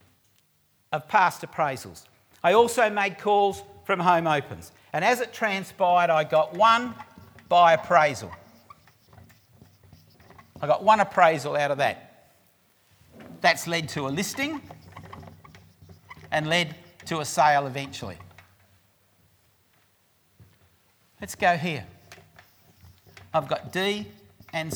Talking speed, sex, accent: 105 wpm, male, Australian